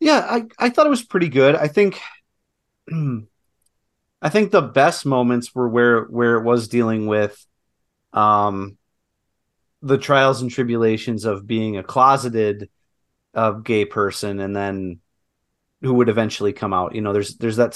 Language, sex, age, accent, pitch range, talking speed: English, male, 30-49, American, 110-140 Hz, 155 wpm